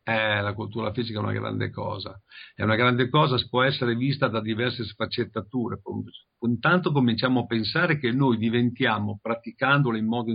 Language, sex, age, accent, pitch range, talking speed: Italian, male, 50-69, native, 115-135 Hz, 160 wpm